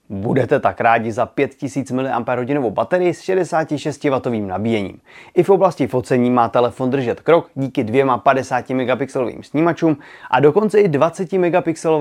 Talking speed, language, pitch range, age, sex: 130 wpm, Czech, 115-155 Hz, 30-49, male